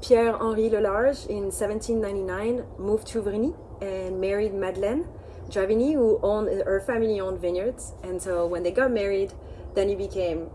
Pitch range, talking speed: 180-215 Hz, 150 wpm